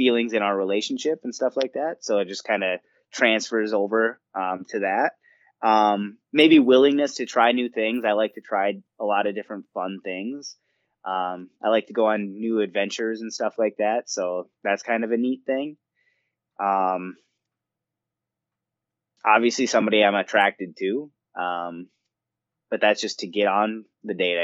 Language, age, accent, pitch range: English, 20-39, American, 95-120 Hz